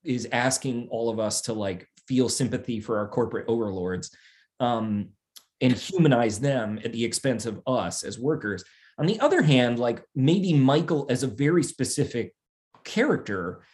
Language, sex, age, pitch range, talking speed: English, male, 30-49, 115-155 Hz, 155 wpm